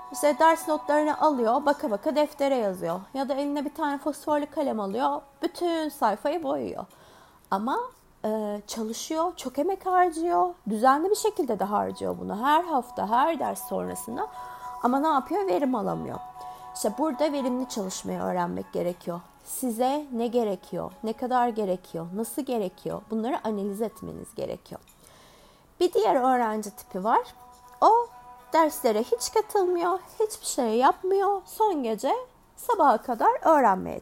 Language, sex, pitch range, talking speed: Turkish, female, 220-305 Hz, 135 wpm